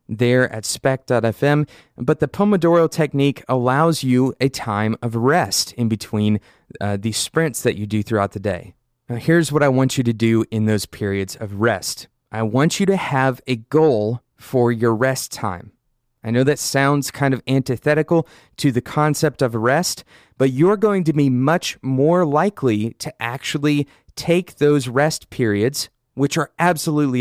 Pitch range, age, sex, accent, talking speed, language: 115-150 Hz, 30-49, male, American, 170 wpm, English